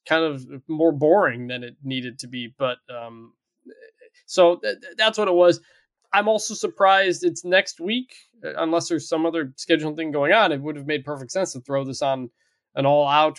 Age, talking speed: 20-39, 195 wpm